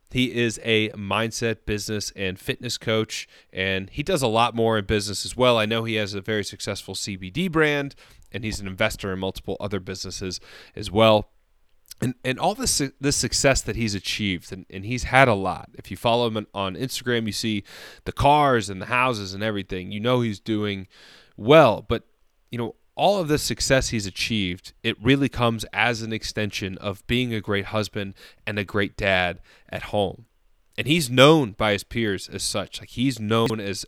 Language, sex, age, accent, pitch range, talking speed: English, male, 30-49, American, 100-125 Hz, 195 wpm